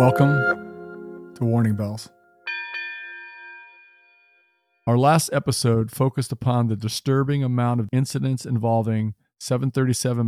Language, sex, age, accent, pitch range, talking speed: English, male, 50-69, American, 115-140 Hz, 95 wpm